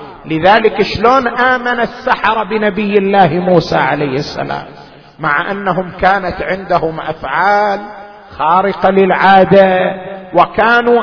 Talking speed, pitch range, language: 95 wpm, 200-285 Hz, Arabic